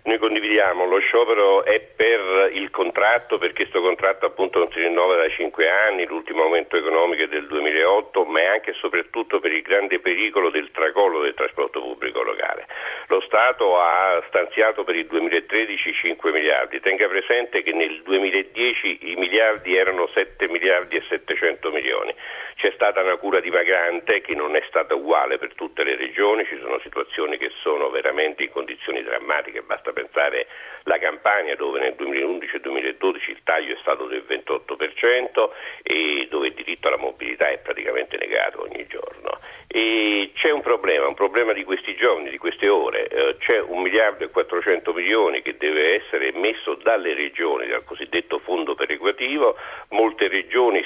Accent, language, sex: native, Italian, male